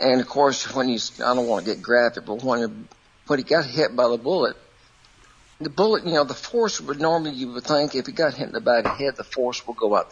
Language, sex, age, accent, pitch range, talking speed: English, male, 60-79, American, 115-155 Hz, 250 wpm